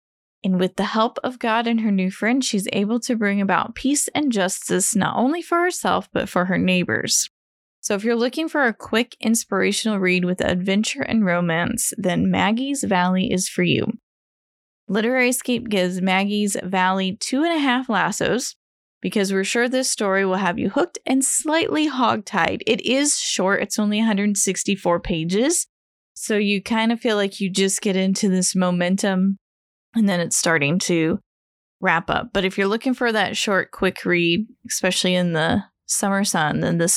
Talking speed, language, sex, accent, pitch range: 175 wpm, English, female, American, 185-235 Hz